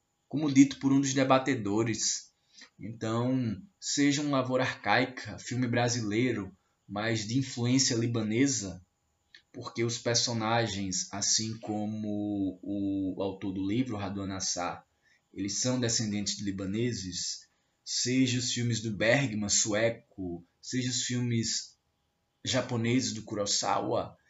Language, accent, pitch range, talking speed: Portuguese, Brazilian, 100-125 Hz, 110 wpm